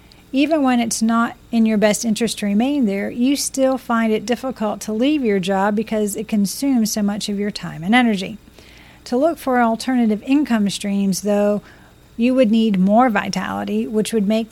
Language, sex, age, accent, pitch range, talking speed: English, female, 40-59, American, 205-240 Hz, 185 wpm